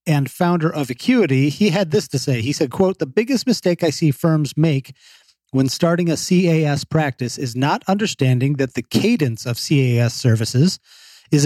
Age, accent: 40-59, American